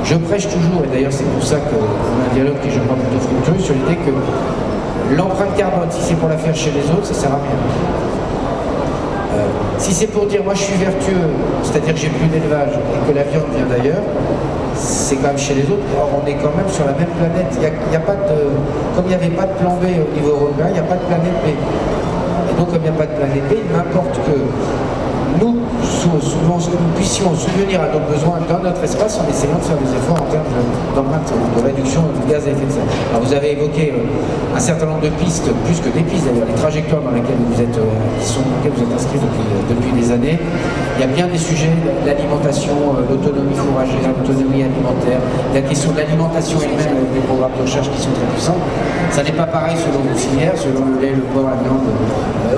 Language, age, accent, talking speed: French, 50-69, French, 235 wpm